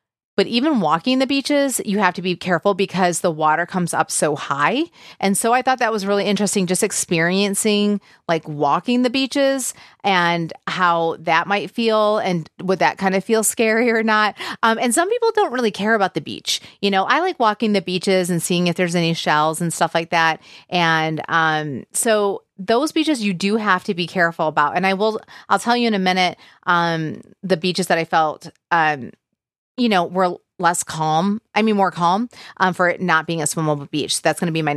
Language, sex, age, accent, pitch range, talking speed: English, female, 30-49, American, 170-220 Hz, 210 wpm